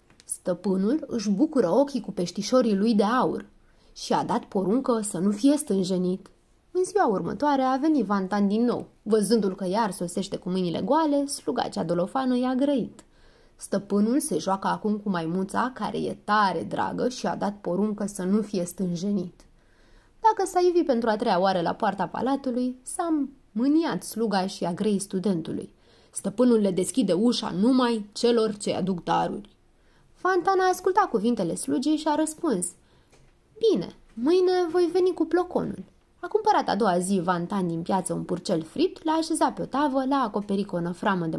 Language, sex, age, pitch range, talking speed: Romanian, female, 20-39, 190-280 Hz, 170 wpm